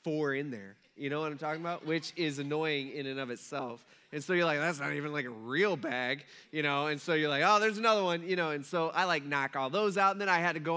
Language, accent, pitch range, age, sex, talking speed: English, American, 140-190 Hz, 20-39, male, 295 wpm